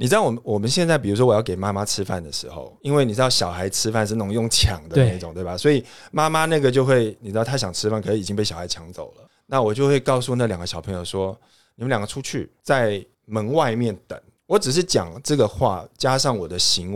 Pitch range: 105-140 Hz